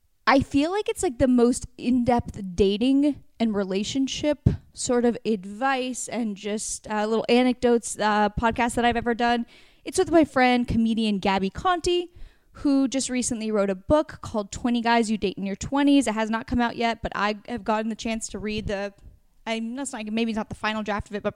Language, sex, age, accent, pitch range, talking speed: English, female, 10-29, American, 215-280 Hz, 210 wpm